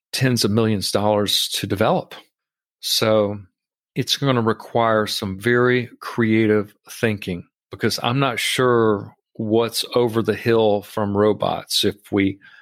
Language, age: English, 40-59